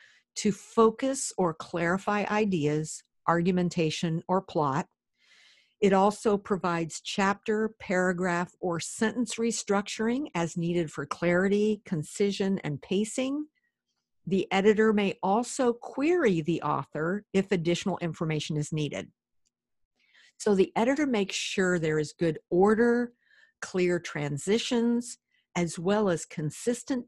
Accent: American